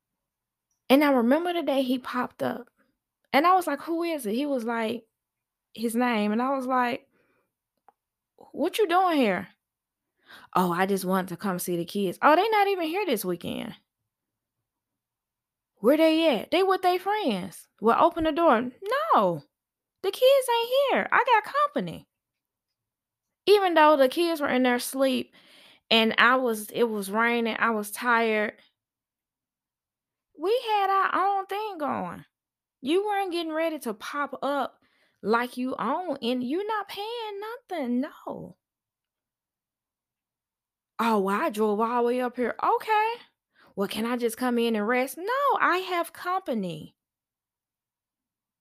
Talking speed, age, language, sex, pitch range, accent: 150 wpm, 20-39, English, female, 230-345 Hz, American